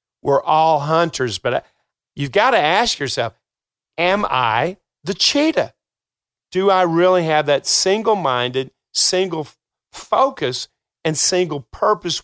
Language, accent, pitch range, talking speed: English, American, 145-185 Hz, 120 wpm